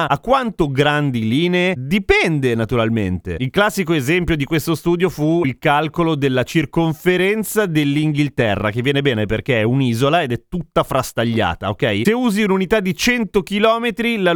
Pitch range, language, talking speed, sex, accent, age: 125-185 Hz, Italian, 150 wpm, male, native, 30-49